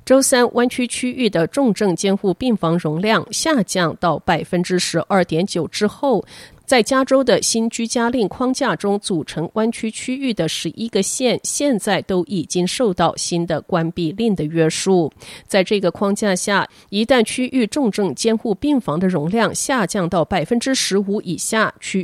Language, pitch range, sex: Chinese, 165-225 Hz, female